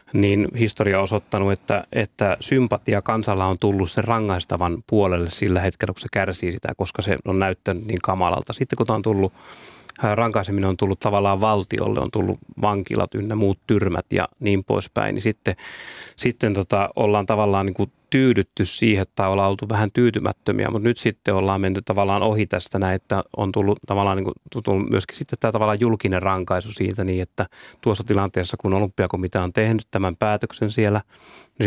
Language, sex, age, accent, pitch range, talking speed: Finnish, male, 30-49, native, 95-110 Hz, 170 wpm